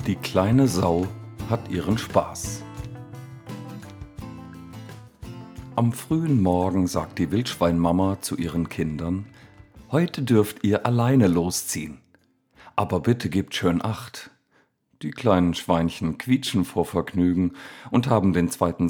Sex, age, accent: male, 50-69, German